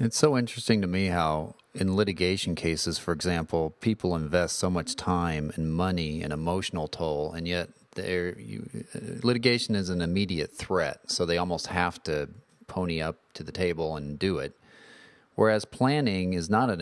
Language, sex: English, male